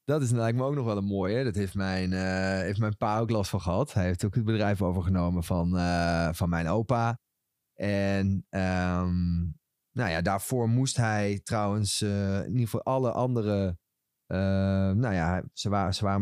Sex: male